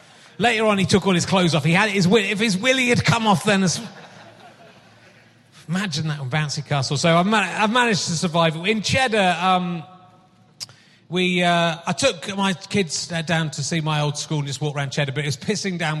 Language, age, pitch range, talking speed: English, 30-49, 140-170 Hz, 215 wpm